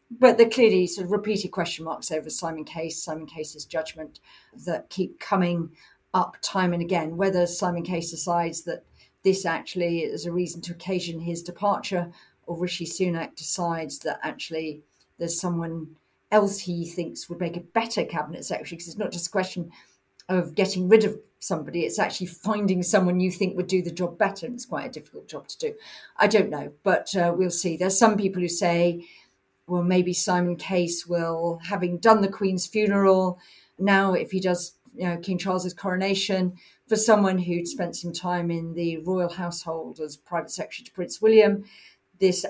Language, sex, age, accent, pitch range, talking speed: English, female, 50-69, British, 170-190 Hz, 185 wpm